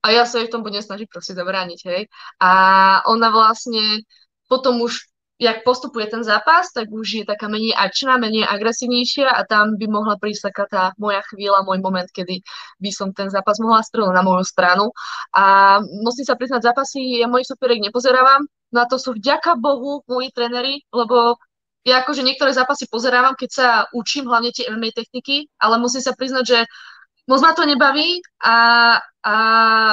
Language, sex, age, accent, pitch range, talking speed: Czech, female, 20-39, native, 205-250 Hz, 180 wpm